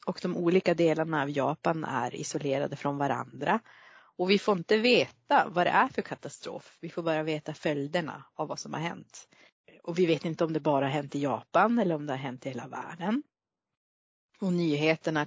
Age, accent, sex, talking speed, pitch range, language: 30-49, native, female, 200 wpm, 155-195 Hz, Swedish